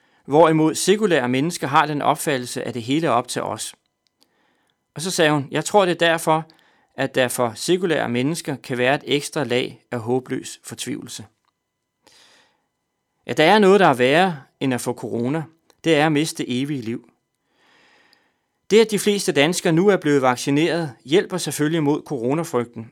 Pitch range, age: 130-170 Hz, 30-49